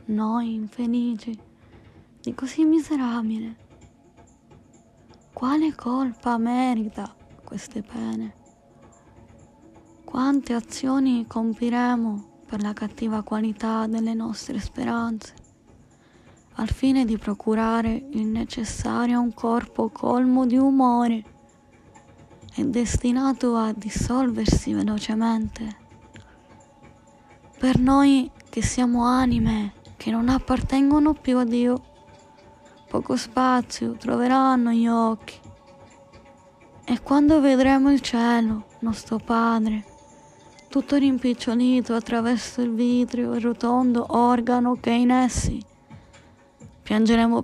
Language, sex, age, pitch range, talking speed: Italian, female, 20-39, 220-250 Hz, 90 wpm